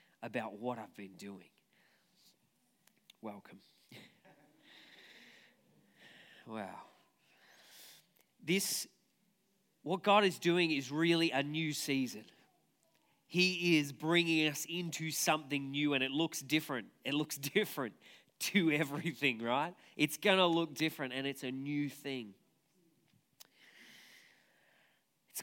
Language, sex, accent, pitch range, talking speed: English, male, Australian, 125-155 Hz, 105 wpm